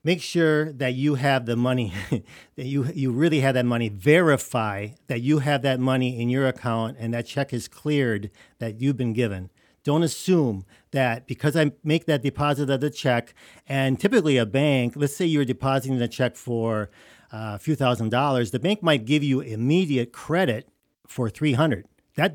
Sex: male